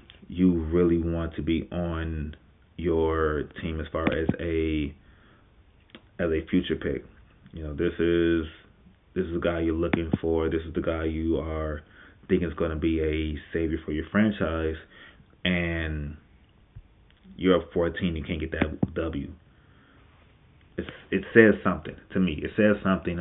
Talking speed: 160 wpm